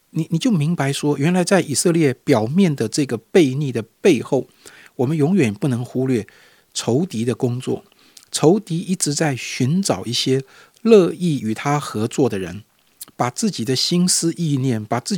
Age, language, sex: 50-69, Chinese, male